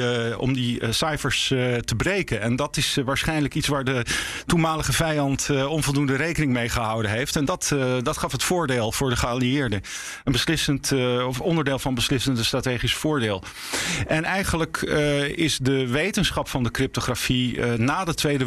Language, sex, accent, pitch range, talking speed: Dutch, male, Dutch, 125-145 Hz, 155 wpm